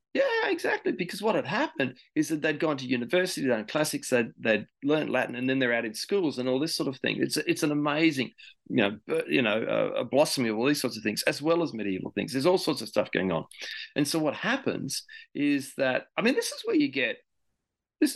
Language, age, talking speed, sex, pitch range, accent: English, 40-59, 240 wpm, male, 120-180 Hz, Australian